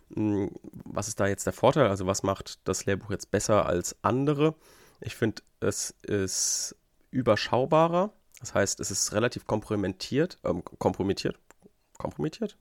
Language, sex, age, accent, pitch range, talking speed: German, male, 30-49, German, 95-110 Hz, 135 wpm